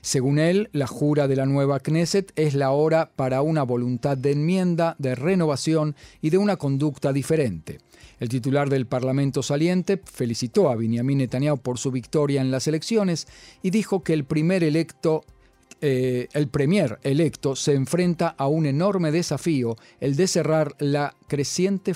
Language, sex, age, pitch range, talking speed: Spanish, male, 40-59, 130-160 Hz, 160 wpm